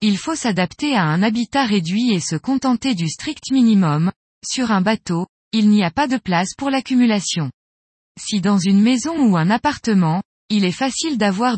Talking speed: 180 wpm